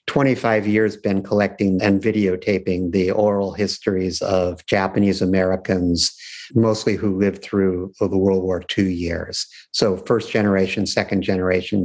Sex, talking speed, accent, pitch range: male, 125 wpm, American, 95-115 Hz